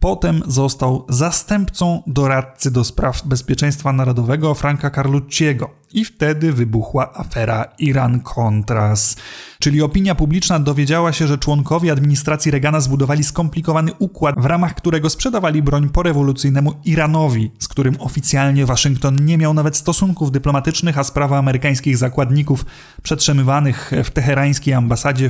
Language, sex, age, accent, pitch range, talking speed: Polish, male, 20-39, native, 130-155 Hz, 120 wpm